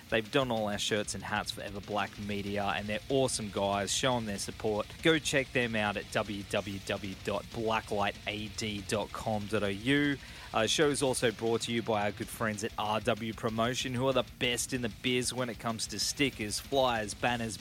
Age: 20-39